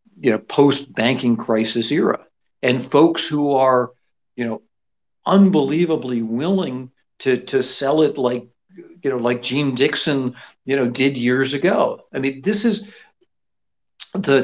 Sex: male